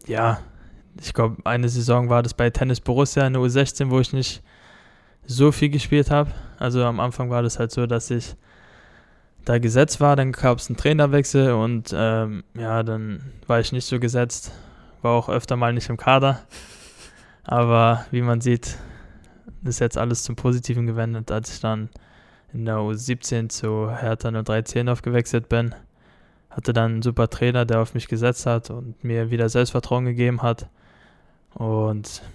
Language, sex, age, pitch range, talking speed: German, male, 20-39, 110-125 Hz, 170 wpm